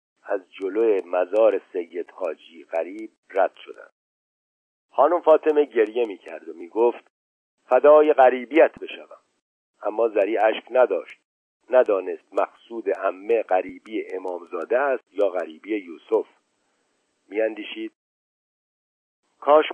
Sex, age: male, 50-69